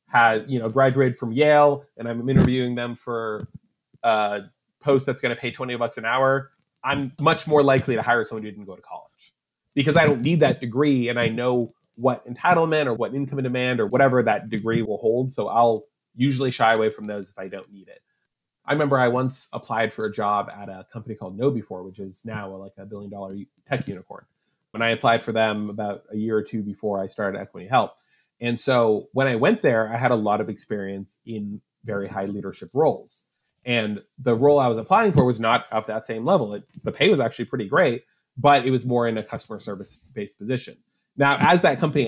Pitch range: 105-135 Hz